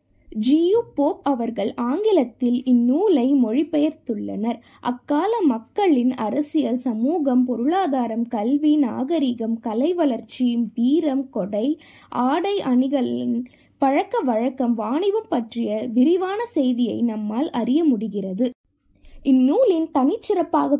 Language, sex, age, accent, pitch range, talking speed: Tamil, female, 20-39, native, 245-325 Hz, 85 wpm